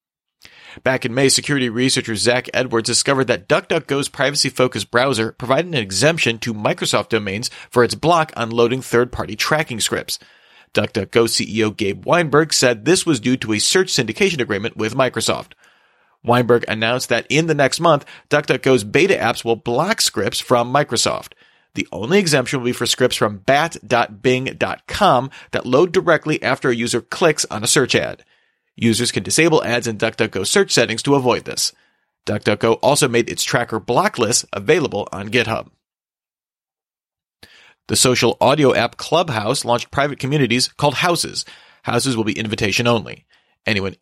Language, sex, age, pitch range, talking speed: English, male, 40-59, 115-145 Hz, 155 wpm